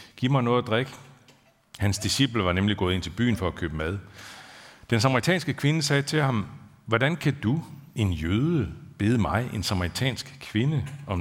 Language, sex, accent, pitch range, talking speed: Danish, male, native, 95-125 Hz, 180 wpm